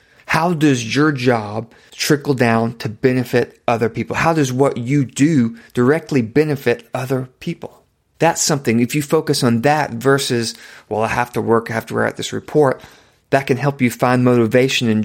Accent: American